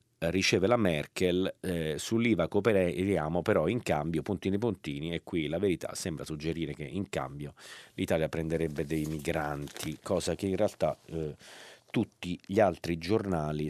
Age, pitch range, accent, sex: 40-59, 80-100 Hz, native, male